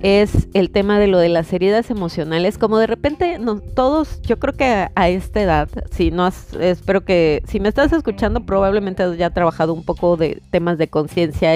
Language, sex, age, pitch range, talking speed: Spanish, female, 30-49, 160-215 Hz, 205 wpm